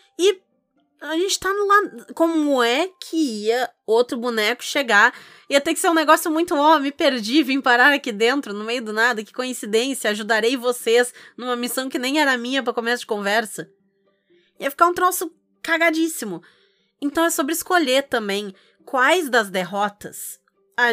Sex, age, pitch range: female, 20-39, 215-315 Hz